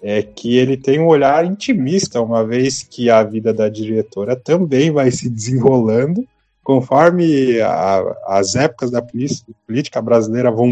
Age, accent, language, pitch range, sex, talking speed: 20-39, Brazilian, Portuguese, 110-150 Hz, male, 155 wpm